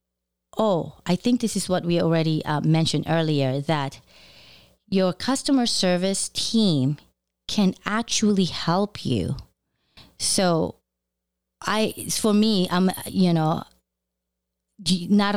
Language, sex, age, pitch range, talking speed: English, female, 30-49, 145-190 Hz, 110 wpm